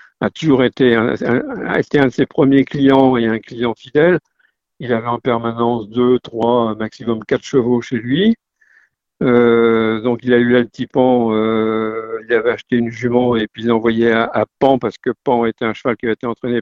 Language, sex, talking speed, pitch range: French, male, 215 wpm, 115-135 Hz